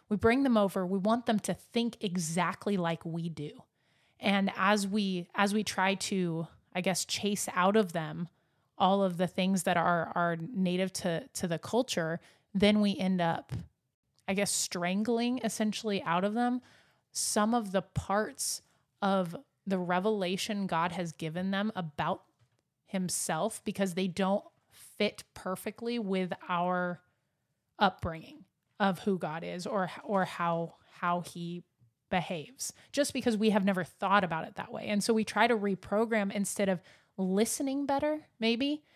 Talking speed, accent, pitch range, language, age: 155 wpm, American, 175-210 Hz, English, 20-39